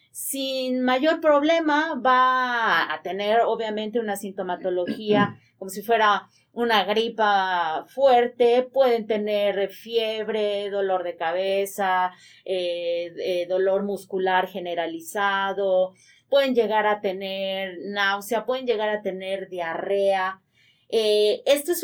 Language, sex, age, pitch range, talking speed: Spanish, female, 30-49, 195-255 Hz, 105 wpm